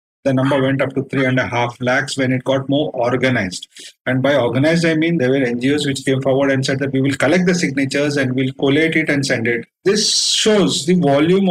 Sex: male